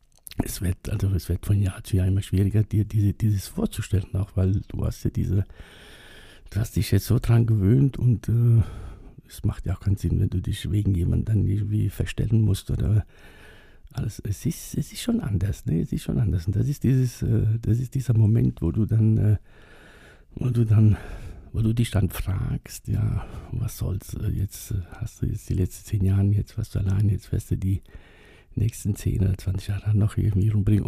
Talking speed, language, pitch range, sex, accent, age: 205 wpm, German, 95-115 Hz, male, German, 60-79